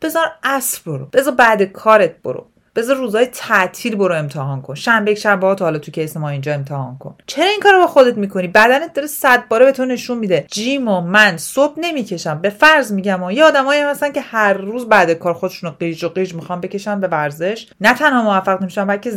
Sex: female